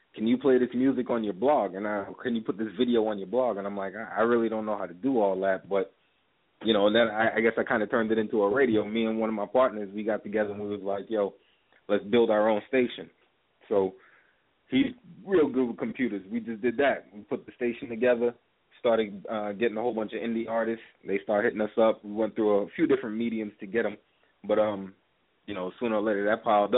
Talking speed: 255 wpm